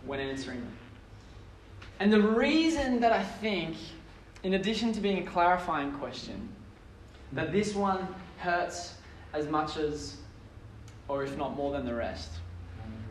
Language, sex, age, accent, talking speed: English, male, 20-39, Australian, 135 wpm